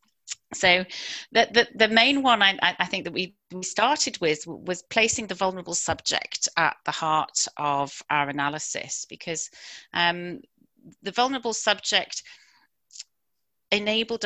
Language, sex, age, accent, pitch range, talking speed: English, female, 40-59, British, 155-200 Hz, 120 wpm